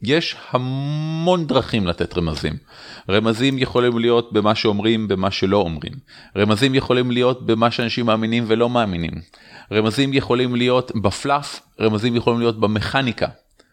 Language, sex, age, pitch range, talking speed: Hebrew, male, 30-49, 110-135 Hz, 125 wpm